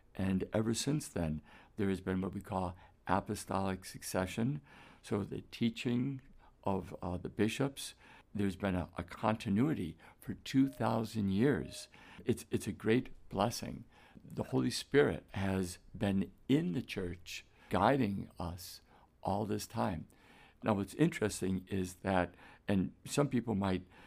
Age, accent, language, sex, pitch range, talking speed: 60-79, American, English, male, 95-115 Hz, 135 wpm